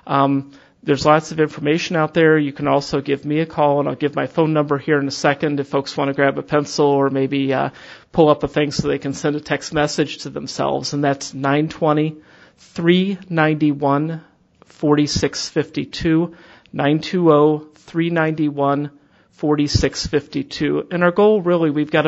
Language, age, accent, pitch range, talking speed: English, 30-49, American, 145-160 Hz, 155 wpm